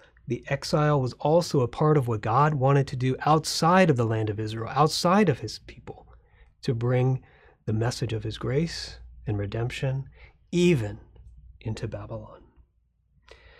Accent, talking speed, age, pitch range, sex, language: American, 150 wpm, 30-49, 110-145 Hz, male, English